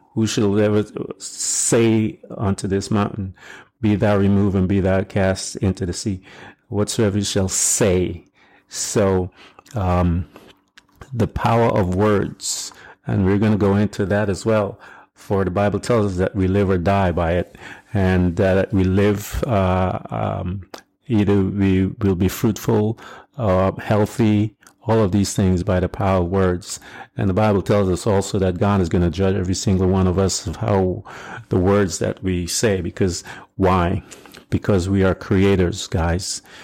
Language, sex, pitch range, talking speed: English, male, 95-105 Hz, 165 wpm